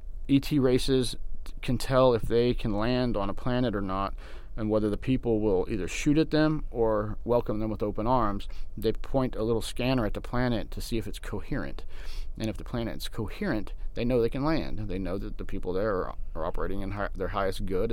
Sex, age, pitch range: male, 30-49, 95-115 Hz